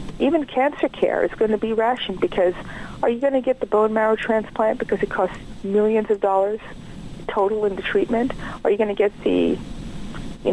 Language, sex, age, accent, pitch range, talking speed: English, female, 50-69, American, 195-250 Hz, 200 wpm